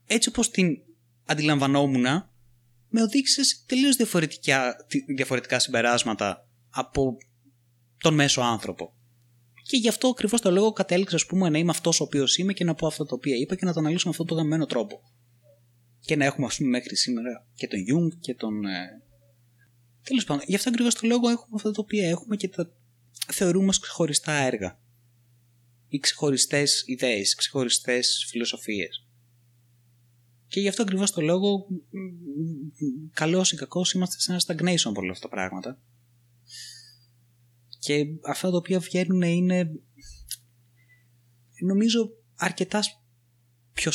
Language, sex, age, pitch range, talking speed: Greek, male, 20-39, 120-170 Hz, 140 wpm